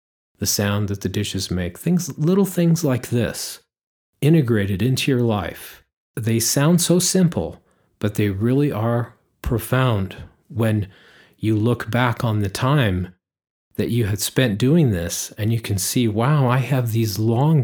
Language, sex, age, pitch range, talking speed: English, male, 40-59, 100-130 Hz, 155 wpm